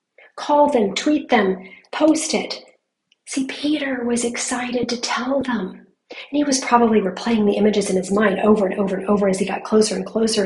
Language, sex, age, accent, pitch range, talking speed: English, female, 40-59, American, 215-280 Hz, 195 wpm